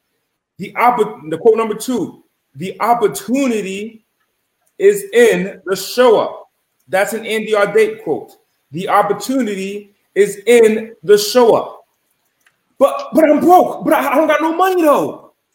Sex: male